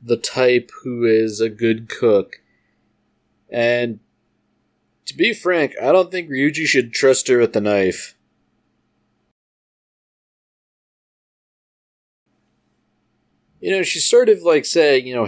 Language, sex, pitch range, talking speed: English, male, 105-140 Hz, 120 wpm